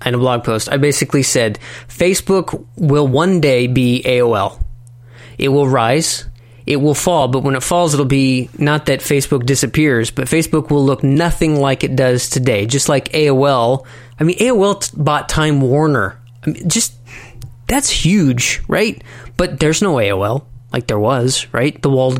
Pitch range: 125-150 Hz